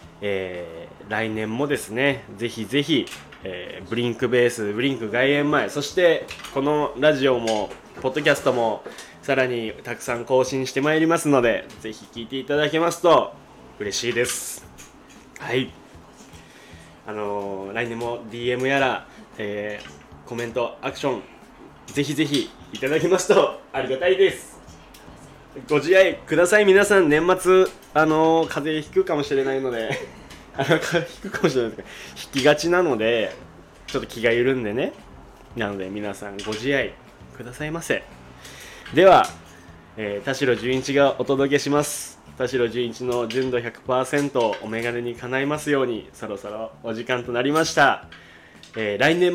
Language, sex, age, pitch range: Japanese, male, 20-39, 110-145 Hz